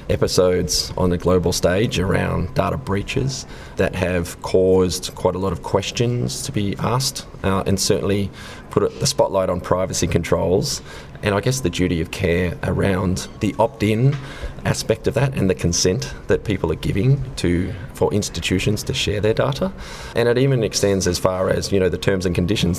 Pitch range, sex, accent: 85-100 Hz, male, Australian